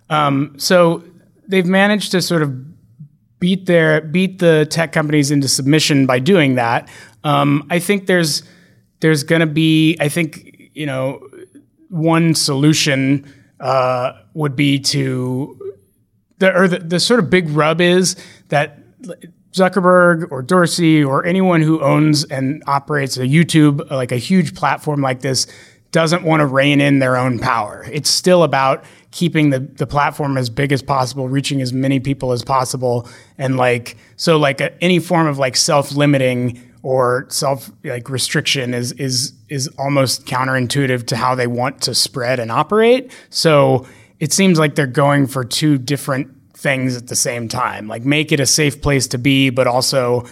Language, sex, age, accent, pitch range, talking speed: English, male, 30-49, American, 130-165 Hz, 165 wpm